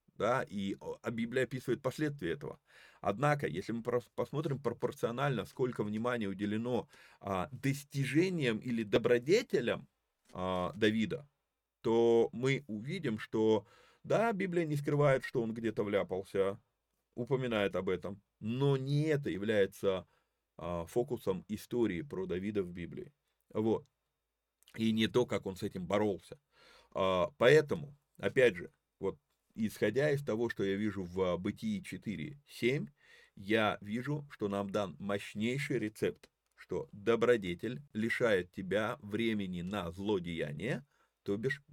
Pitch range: 100-135 Hz